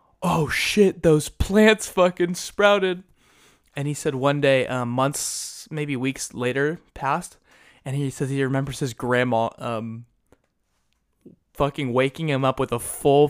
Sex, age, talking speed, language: male, 20-39, 145 wpm, English